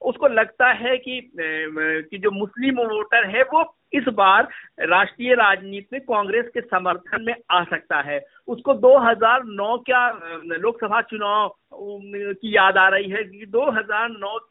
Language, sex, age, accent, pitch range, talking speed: Hindi, male, 50-69, native, 195-255 Hz, 140 wpm